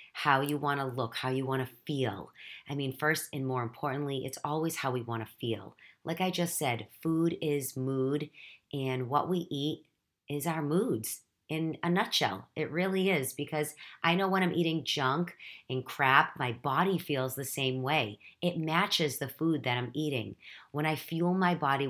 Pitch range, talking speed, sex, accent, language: 130-165 Hz, 190 wpm, female, American, English